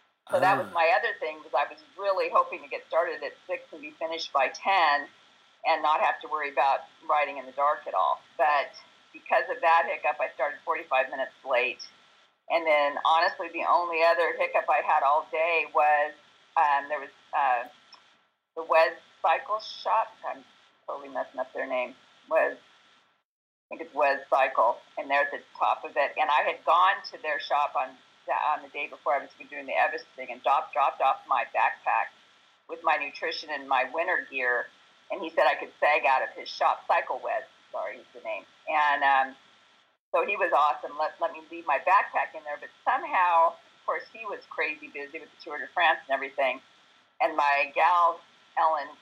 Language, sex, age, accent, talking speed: English, female, 40-59, American, 200 wpm